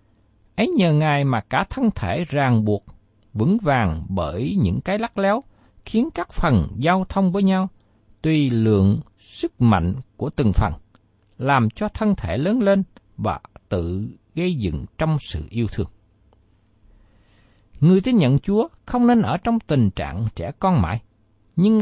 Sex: male